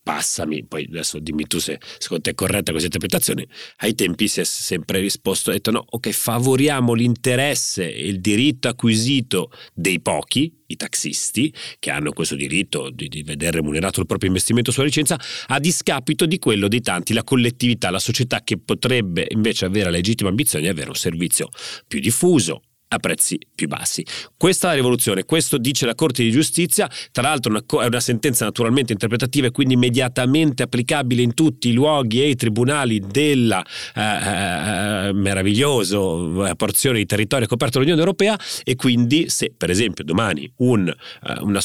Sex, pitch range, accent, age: male, 100-135 Hz, native, 40-59